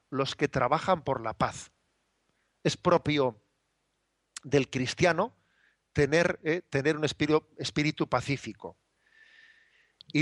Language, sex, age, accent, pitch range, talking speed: Spanish, male, 40-59, Spanish, 140-160 Hz, 105 wpm